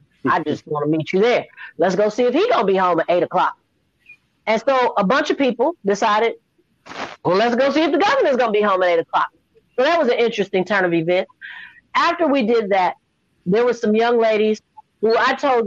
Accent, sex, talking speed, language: American, female, 230 wpm, English